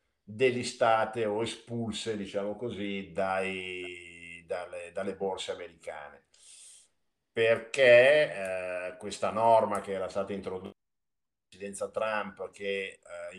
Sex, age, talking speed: male, 50-69, 100 wpm